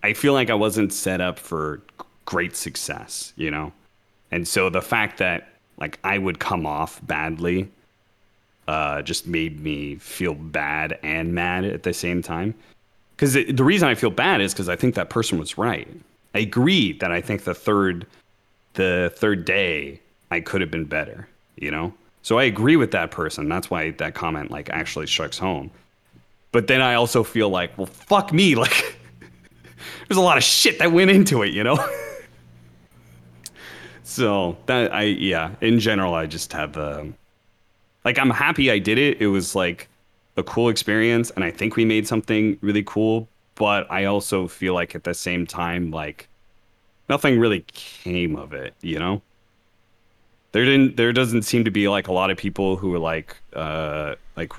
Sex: male